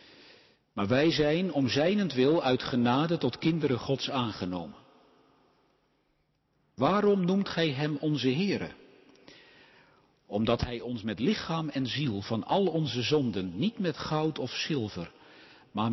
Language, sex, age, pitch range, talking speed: Dutch, male, 50-69, 125-165 Hz, 130 wpm